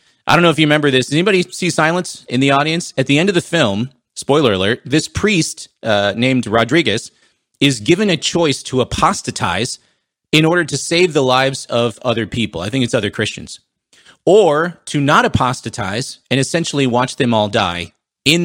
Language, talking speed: English, 190 wpm